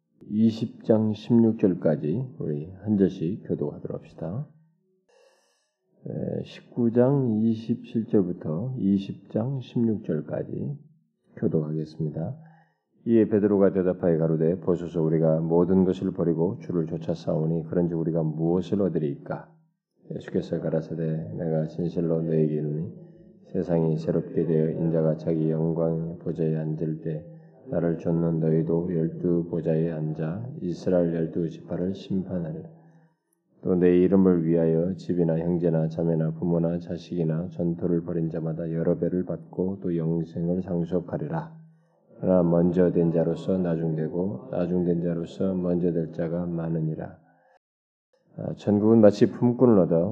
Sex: male